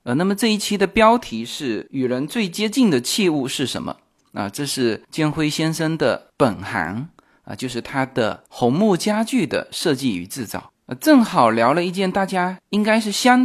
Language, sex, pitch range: Chinese, male, 130-200 Hz